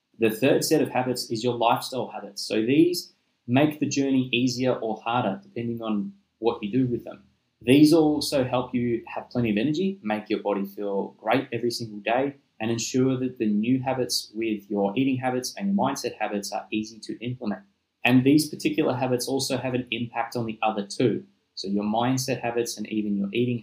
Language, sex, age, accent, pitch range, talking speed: English, male, 20-39, Australian, 100-125 Hz, 200 wpm